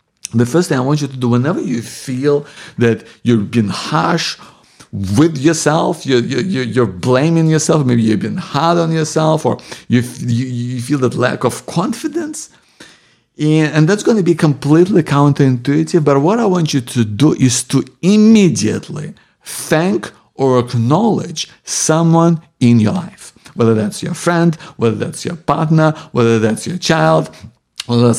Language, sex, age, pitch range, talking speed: English, male, 50-69, 125-170 Hz, 160 wpm